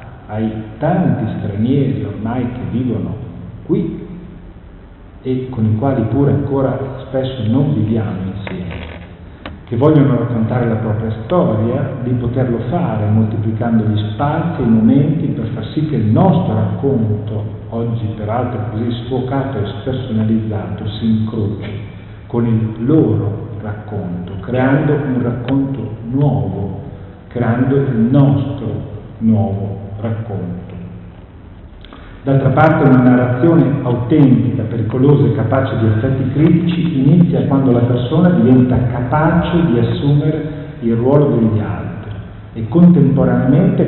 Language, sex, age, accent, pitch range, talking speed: Italian, male, 50-69, native, 110-140 Hz, 120 wpm